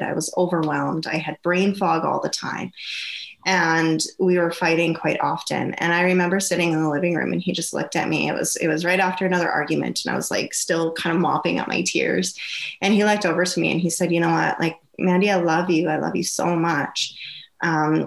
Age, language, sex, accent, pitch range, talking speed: 20-39, English, female, American, 160-195 Hz, 240 wpm